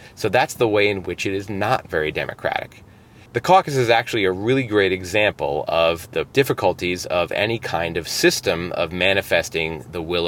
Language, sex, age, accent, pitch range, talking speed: English, male, 30-49, American, 95-125 Hz, 180 wpm